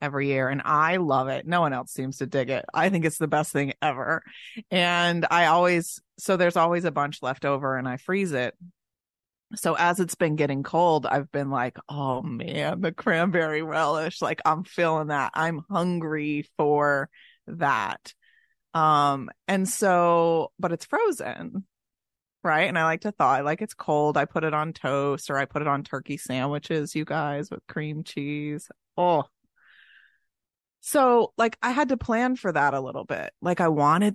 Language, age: English, 30-49